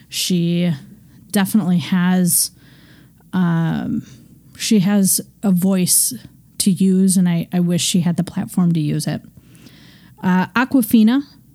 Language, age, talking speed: English, 30-49, 120 wpm